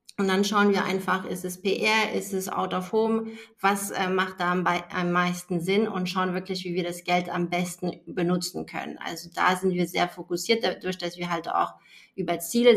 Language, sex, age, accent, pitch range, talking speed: German, female, 30-49, German, 175-200 Hz, 210 wpm